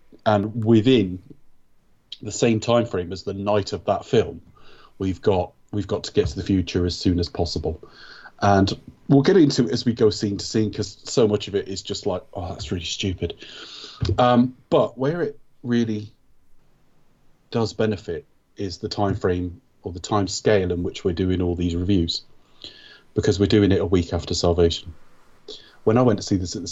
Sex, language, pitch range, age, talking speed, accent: male, English, 90-105 Hz, 30-49, 195 wpm, British